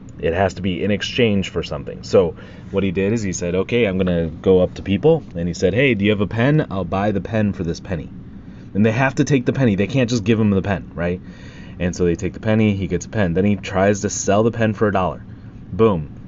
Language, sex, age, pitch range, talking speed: English, male, 30-49, 90-110 Hz, 275 wpm